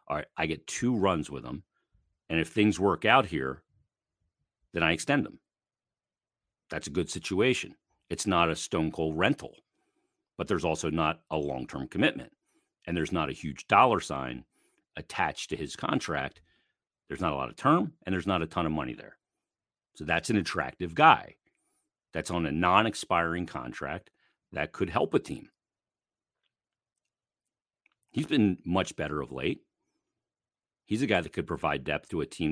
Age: 50-69